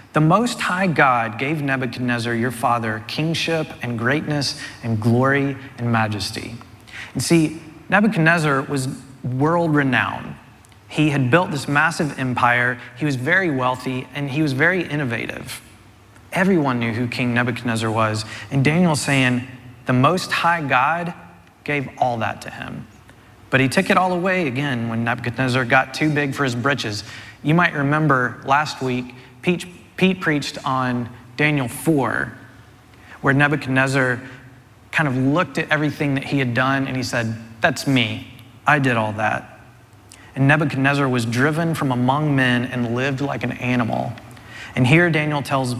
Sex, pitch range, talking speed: male, 120-150 Hz, 150 wpm